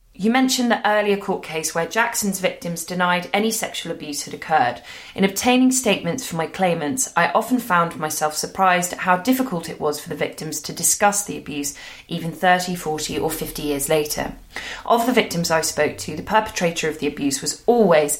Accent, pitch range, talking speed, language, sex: British, 155-200 Hz, 190 wpm, English, female